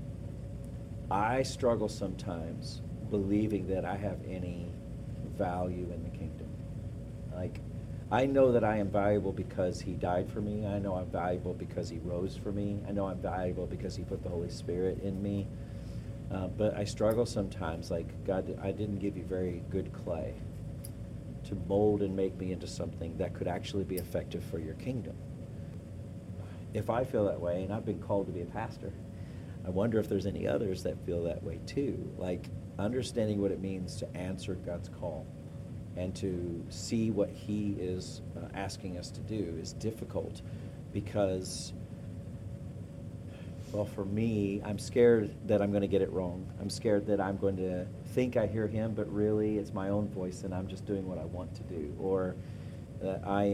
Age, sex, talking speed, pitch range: 50-69, male, 180 wpm, 90-110 Hz